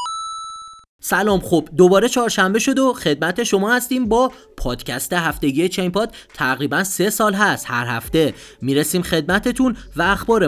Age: 30-49